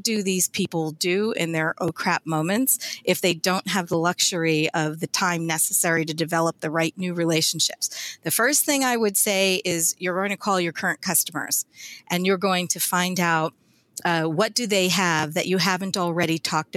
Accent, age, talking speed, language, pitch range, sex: American, 40-59, 195 wpm, English, 165-200 Hz, female